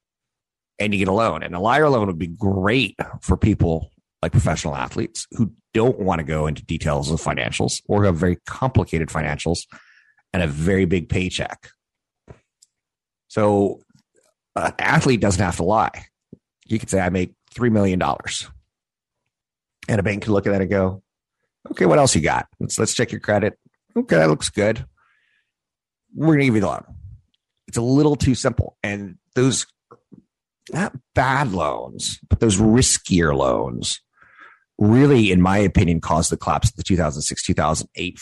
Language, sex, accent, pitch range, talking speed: English, male, American, 85-110 Hz, 165 wpm